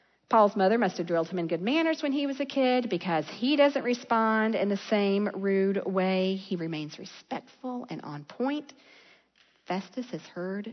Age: 40-59